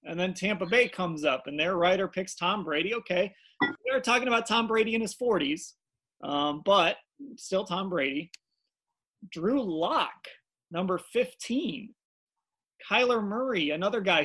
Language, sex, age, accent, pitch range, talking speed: English, male, 30-49, American, 170-245 Hz, 145 wpm